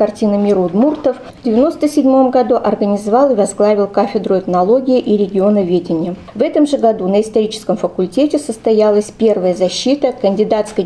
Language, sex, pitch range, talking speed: Russian, female, 205-255 Hz, 135 wpm